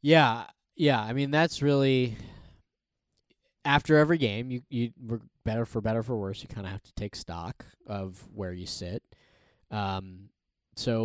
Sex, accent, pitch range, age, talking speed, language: male, American, 105-130 Hz, 20-39, 170 wpm, English